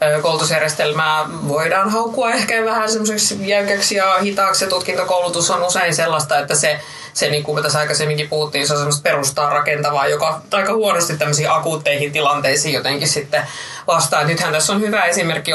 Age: 20-39